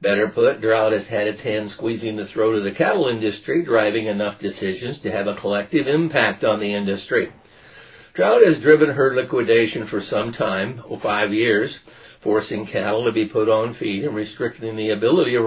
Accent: American